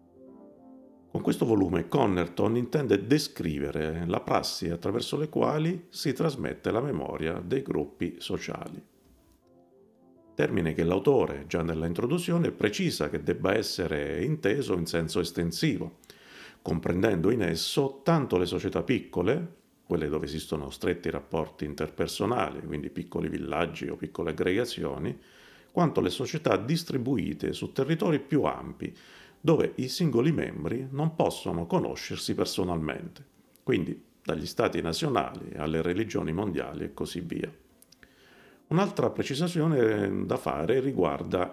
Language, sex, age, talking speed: Italian, male, 40-59, 120 wpm